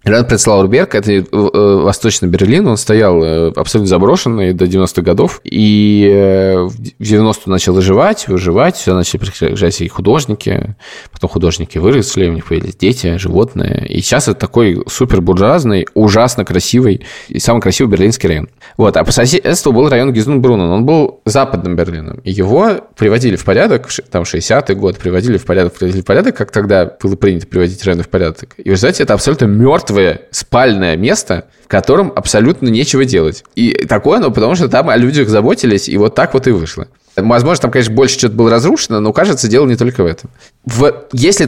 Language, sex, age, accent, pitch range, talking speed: Russian, male, 20-39, native, 90-115 Hz, 170 wpm